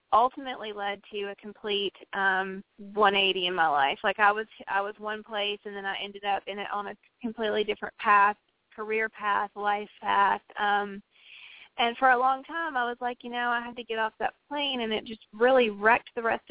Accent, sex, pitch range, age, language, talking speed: American, female, 205-230 Hz, 20-39, English, 210 wpm